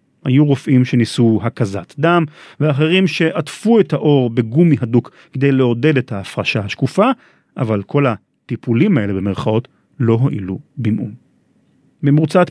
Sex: male